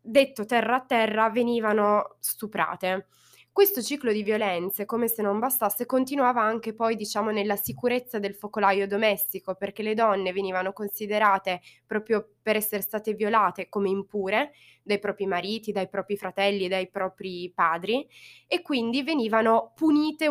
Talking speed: 140 wpm